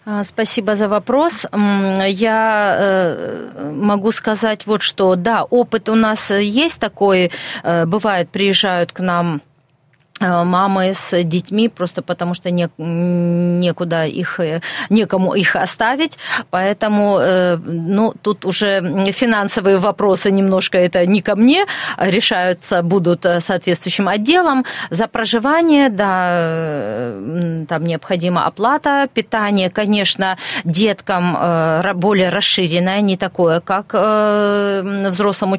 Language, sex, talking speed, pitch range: Russian, female, 100 wpm, 175-215 Hz